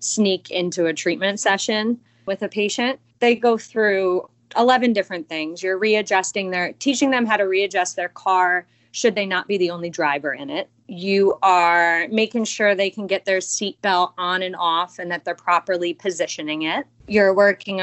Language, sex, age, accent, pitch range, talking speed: English, female, 20-39, American, 175-210 Hz, 180 wpm